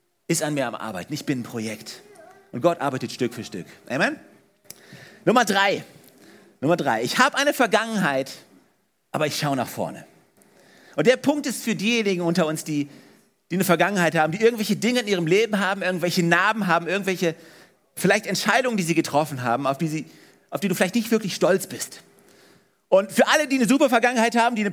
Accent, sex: German, male